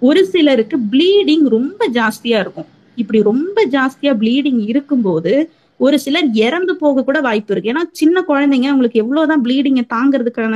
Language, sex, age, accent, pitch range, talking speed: Tamil, female, 20-39, native, 230-305 Hz, 130 wpm